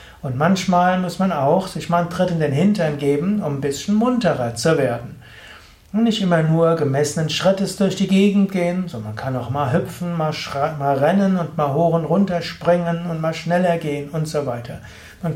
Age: 60-79